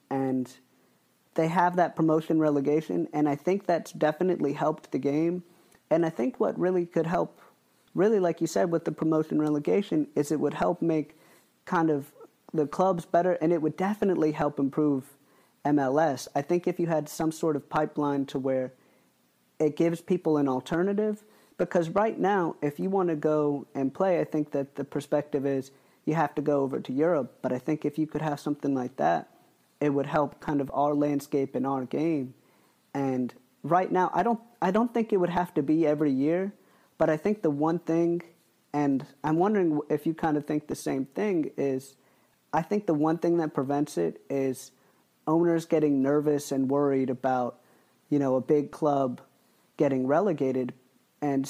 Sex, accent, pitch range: male, American, 140-170 Hz